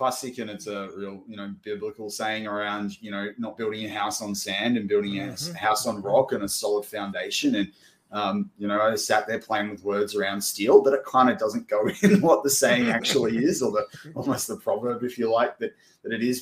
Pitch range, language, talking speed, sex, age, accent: 100-145 Hz, English, 235 wpm, male, 20-39, Australian